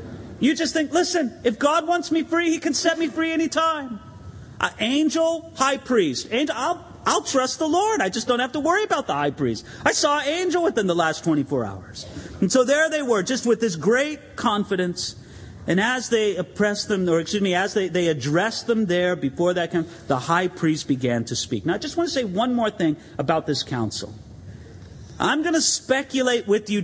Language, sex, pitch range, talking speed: English, male, 155-255 Hz, 215 wpm